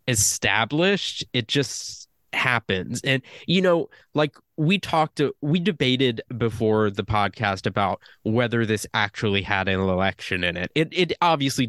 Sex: male